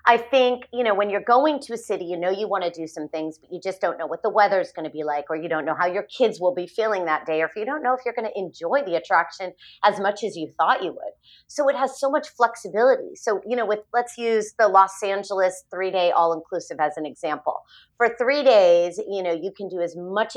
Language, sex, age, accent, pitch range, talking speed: English, female, 30-49, American, 175-235 Hz, 275 wpm